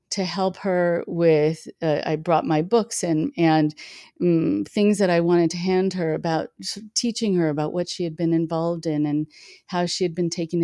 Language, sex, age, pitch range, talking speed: English, female, 40-59, 155-185 Hz, 200 wpm